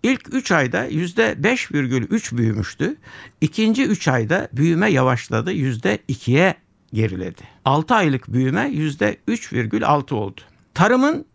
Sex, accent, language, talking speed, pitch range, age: male, native, Turkish, 95 wpm, 130-200 Hz, 60-79